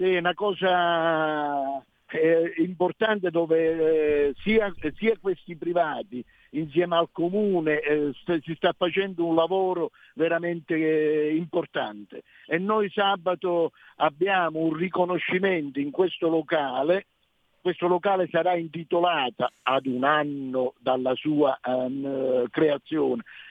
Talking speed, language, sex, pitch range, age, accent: 110 wpm, Italian, male, 140-180 Hz, 50-69, native